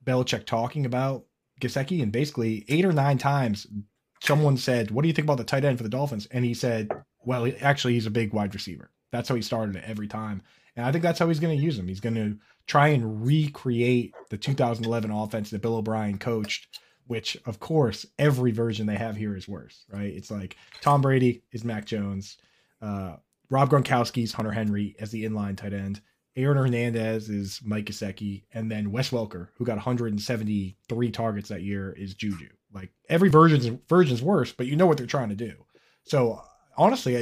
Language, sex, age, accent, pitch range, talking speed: English, male, 20-39, American, 105-135 Hz, 200 wpm